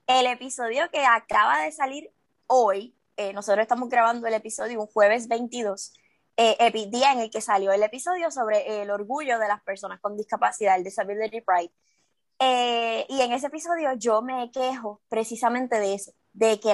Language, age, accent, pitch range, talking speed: Spanish, 20-39, American, 210-265 Hz, 175 wpm